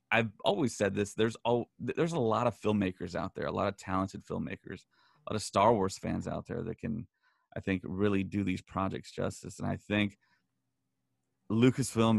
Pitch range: 95-110 Hz